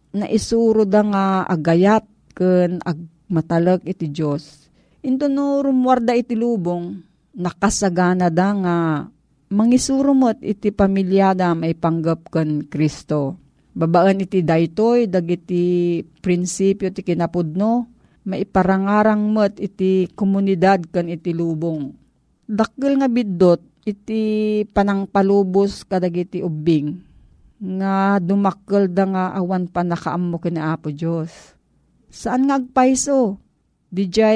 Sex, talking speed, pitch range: female, 110 wpm, 170-210 Hz